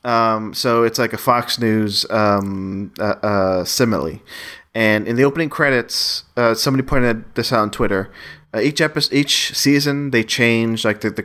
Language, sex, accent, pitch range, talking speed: English, male, American, 100-120 Hz, 175 wpm